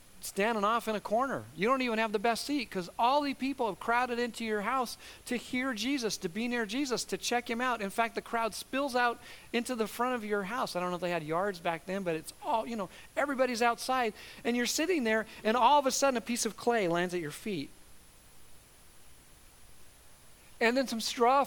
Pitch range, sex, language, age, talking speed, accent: 225-285 Hz, male, English, 40-59, 225 wpm, American